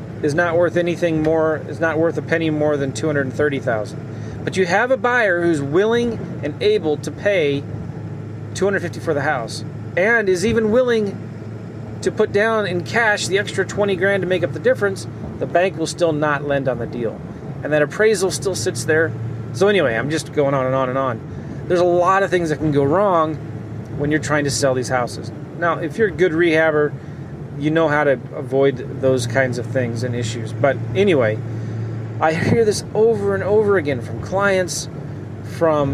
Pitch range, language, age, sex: 130-175 Hz, English, 30-49, male